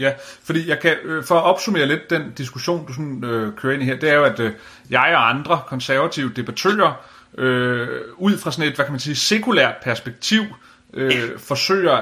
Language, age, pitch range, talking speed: Danish, 30-49, 120-155 Hz, 200 wpm